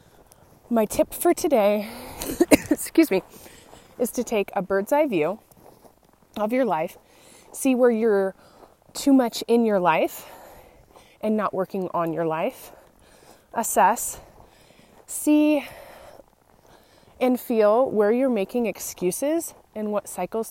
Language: English